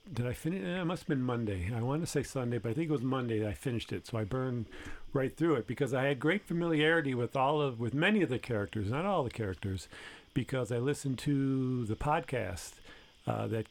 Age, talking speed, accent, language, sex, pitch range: 50-69, 240 wpm, American, English, male, 110-145 Hz